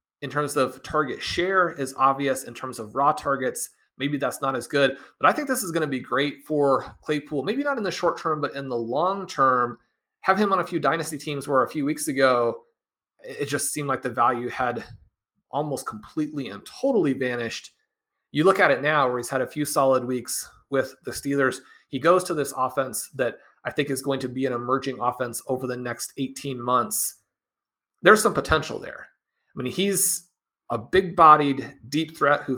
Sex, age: male, 30-49